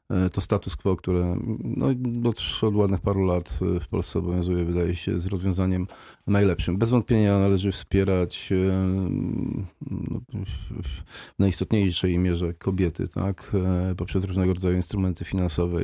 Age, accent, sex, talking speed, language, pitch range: 40-59, native, male, 115 wpm, Polish, 90-100 Hz